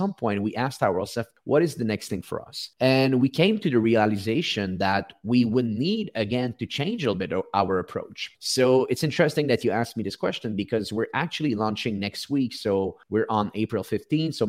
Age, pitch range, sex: 30-49, 100-130 Hz, male